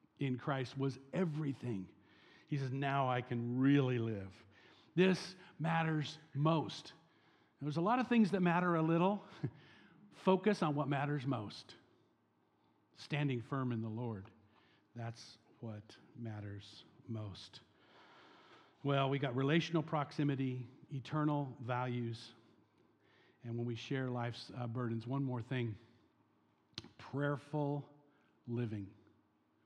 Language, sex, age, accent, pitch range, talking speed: English, male, 50-69, American, 120-160 Hz, 115 wpm